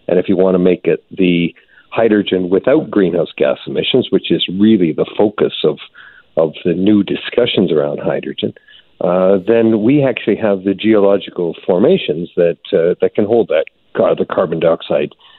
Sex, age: male, 50-69